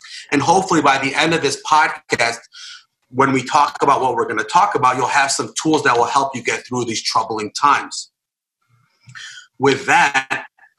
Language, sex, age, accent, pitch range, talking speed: English, male, 30-49, American, 125-155 Hz, 185 wpm